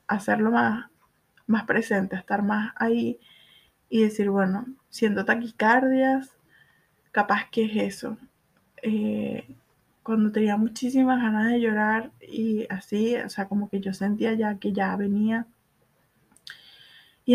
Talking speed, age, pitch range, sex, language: 125 wpm, 20-39, 210-230 Hz, female, English